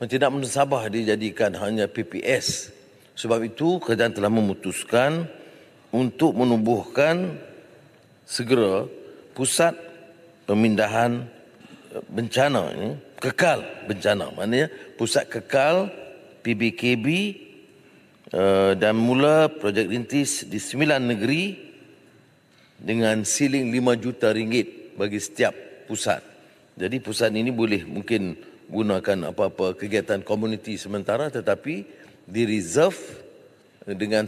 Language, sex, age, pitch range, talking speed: English, male, 40-59, 105-130 Hz, 90 wpm